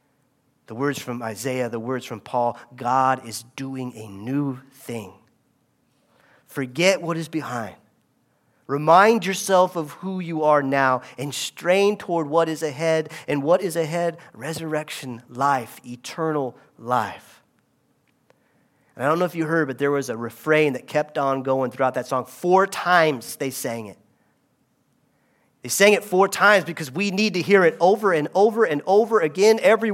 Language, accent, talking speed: English, American, 160 wpm